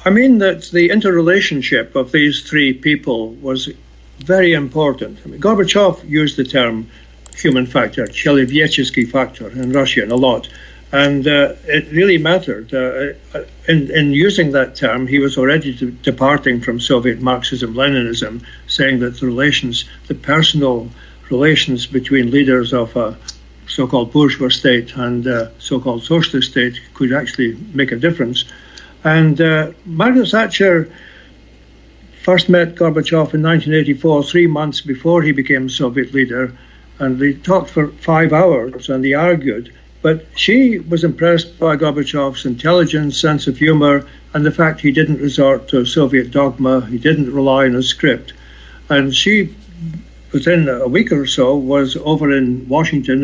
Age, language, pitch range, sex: 60-79, English, 130-160 Hz, male